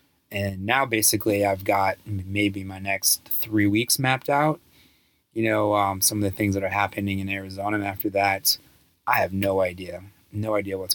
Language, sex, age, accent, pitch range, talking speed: English, male, 20-39, American, 95-110 Hz, 185 wpm